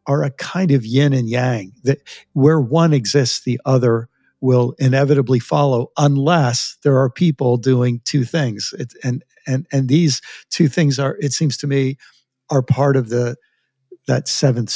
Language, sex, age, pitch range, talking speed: English, male, 60-79, 125-150 Hz, 165 wpm